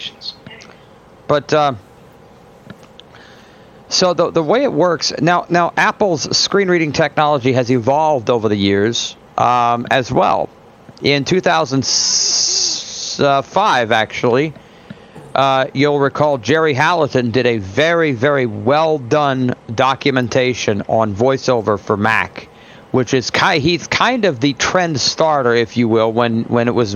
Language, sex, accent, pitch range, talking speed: English, male, American, 120-140 Hz, 130 wpm